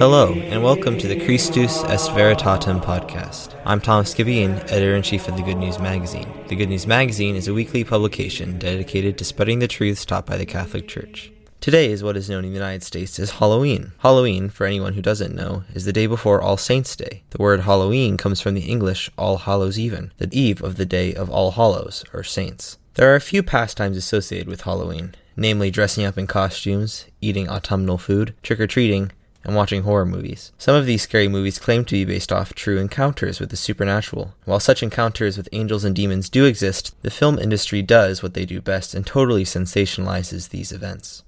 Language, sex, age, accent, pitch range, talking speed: English, male, 20-39, American, 95-115 Hz, 205 wpm